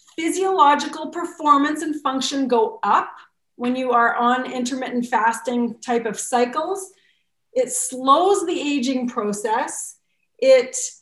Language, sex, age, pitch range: English, female, 30-49, 210-265 Hz